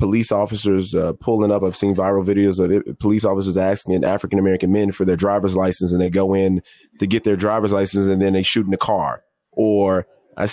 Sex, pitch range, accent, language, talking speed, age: male, 100-120 Hz, American, English, 210 wpm, 20-39